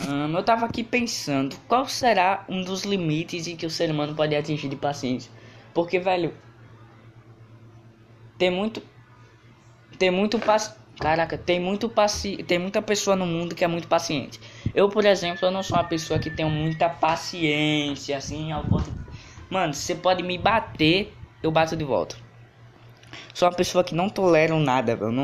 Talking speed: 165 wpm